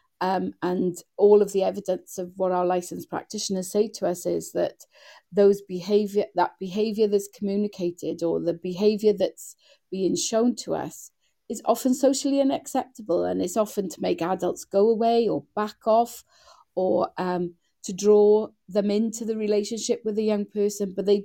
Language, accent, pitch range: English, British, 185-220 Hz